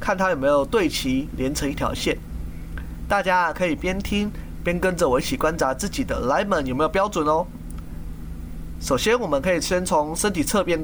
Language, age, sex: Chinese, 20-39, male